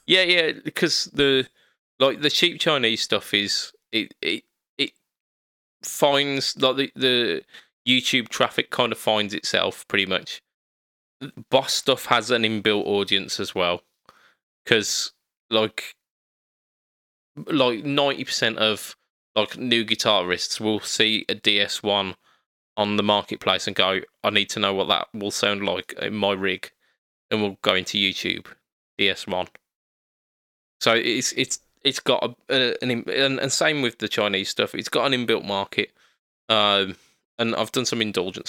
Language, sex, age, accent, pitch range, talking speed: English, male, 20-39, British, 100-130 Hz, 145 wpm